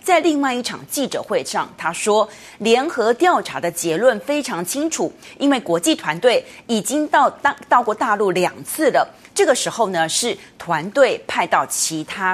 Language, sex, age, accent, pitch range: Chinese, female, 30-49, native, 180-280 Hz